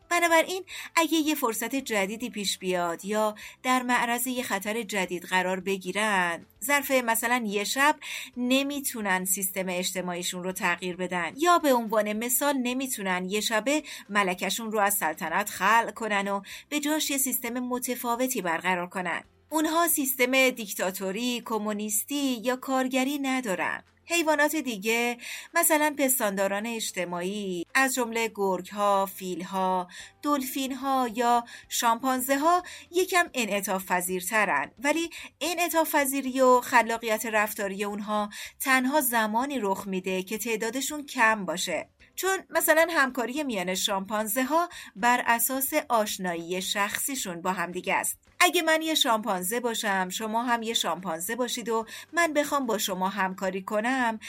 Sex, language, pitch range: female, Persian, 195-275 Hz